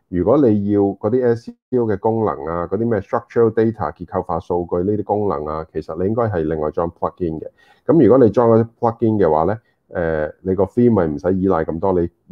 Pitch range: 90-110 Hz